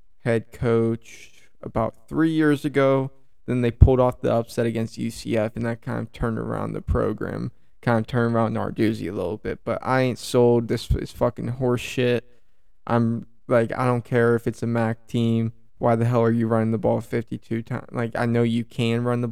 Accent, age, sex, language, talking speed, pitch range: American, 20-39, male, English, 205 wpm, 115-125 Hz